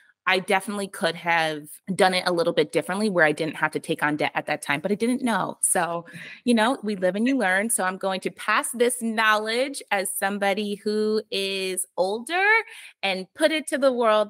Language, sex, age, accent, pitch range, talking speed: English, female, 20-39, American, 190-255 Hz, 215 wpm